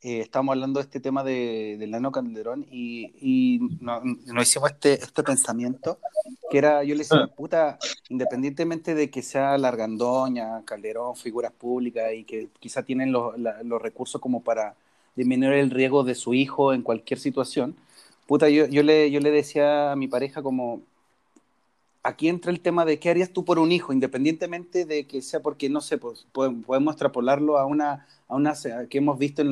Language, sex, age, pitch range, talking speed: Spanish, male, 30-49, 130-155 Hz, 185 wpm